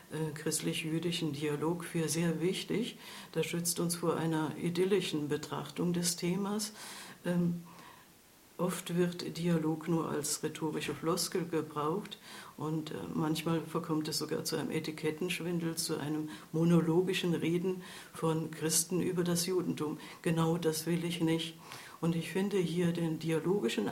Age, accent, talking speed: 60-79, German, 125 wpm